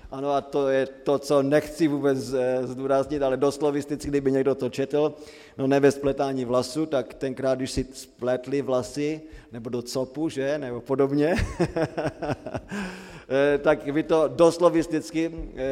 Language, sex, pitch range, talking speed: Slovak, male, 120-145 Hz, 135 wpm